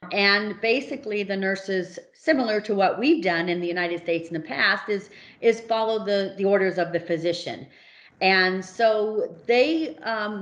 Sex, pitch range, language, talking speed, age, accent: female, 185-230 Hz, English, 165 wpm, 40-59, American